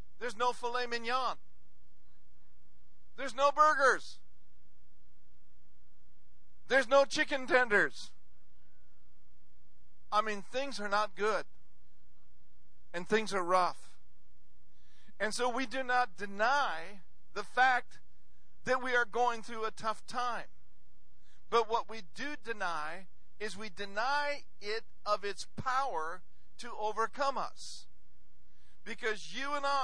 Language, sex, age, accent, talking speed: English, male, 50-69, American, 110 wpm